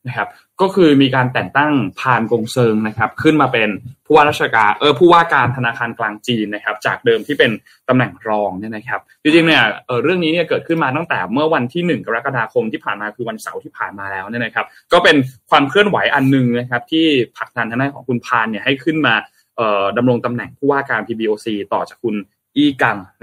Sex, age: male, 20-39